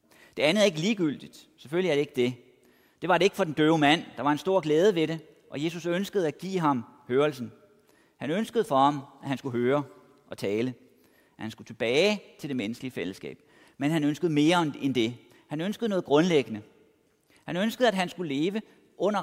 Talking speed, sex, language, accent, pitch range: 210 wpm, male, Danish, native, 135-195 Hz